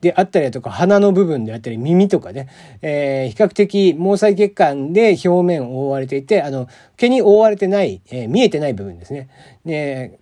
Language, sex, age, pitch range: Japanese, male, 40-59, 135-200 Hz